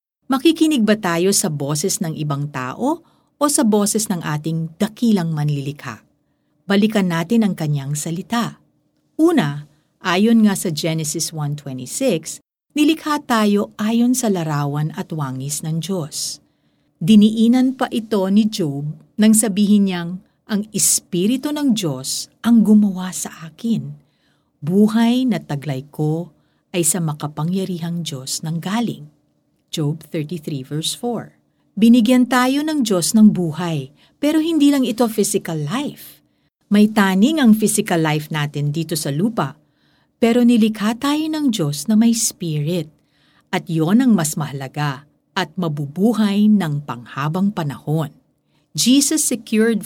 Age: 50-69